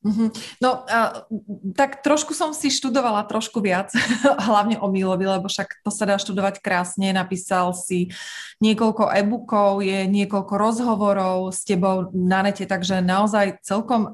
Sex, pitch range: female, 195-265 Hz